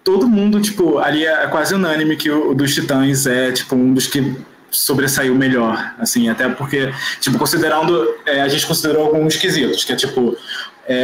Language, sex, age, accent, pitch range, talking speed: Portuguese, male, 20-39, Brazilian, 135-180 Hz, 180 wpm